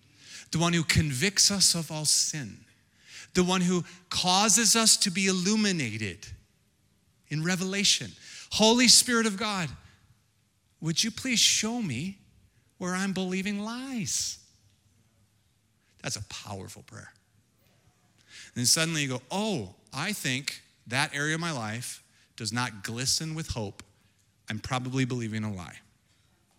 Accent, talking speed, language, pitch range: American, 130 wpm, English, 110-160 Hz